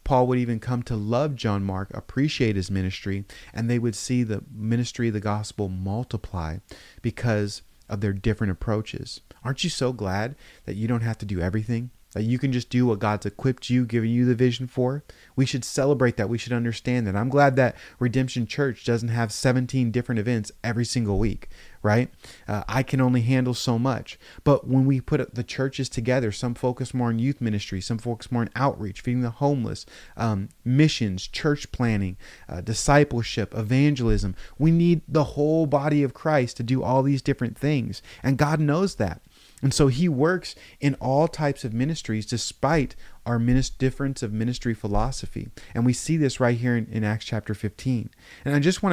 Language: English